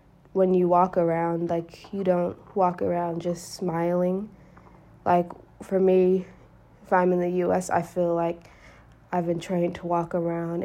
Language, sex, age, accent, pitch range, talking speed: English, female, 20-39, American, 170-180 Hz, 160 wpm